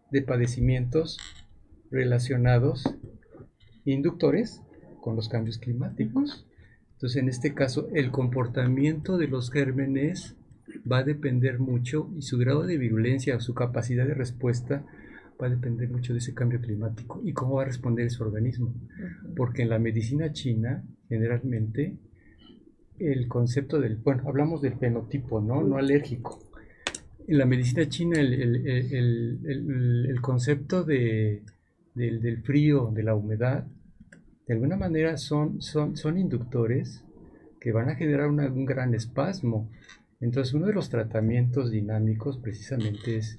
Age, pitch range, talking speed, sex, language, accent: 50-69, 115-145 Hz, 140 wpm, male, Spanish, Mexican